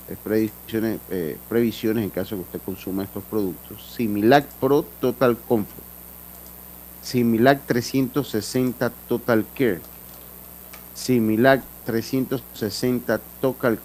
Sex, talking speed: male, 100 wpm